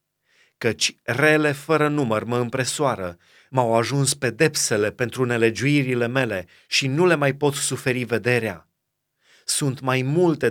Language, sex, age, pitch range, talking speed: Romanian, male, 30-49, 125-155 Hz, 125 wpm